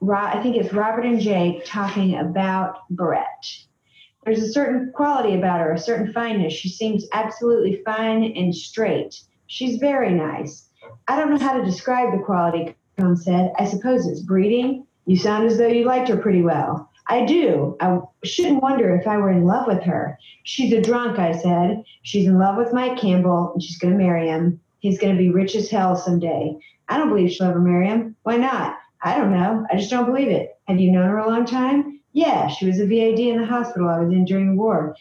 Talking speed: 215 wpm